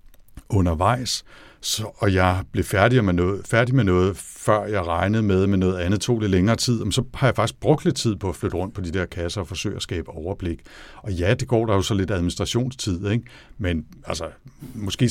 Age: 60-79